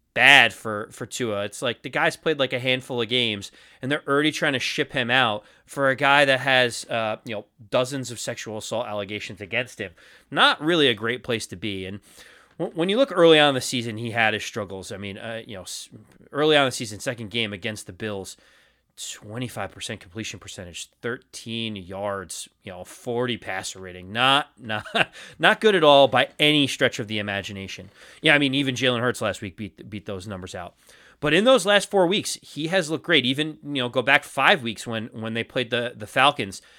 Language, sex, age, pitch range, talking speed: English, male, 30-49, 110-150 Hz, 210 wpm